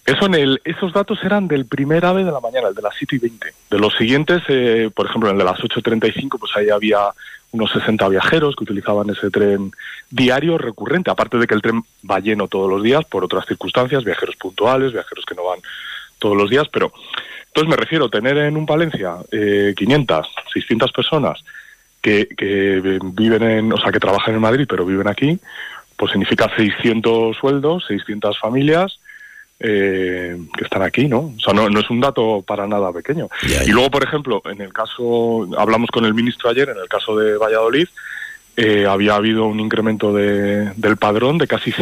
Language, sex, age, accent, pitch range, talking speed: Spanish, male, 30-49, Spanish, 105-140 Hz, 200 wpm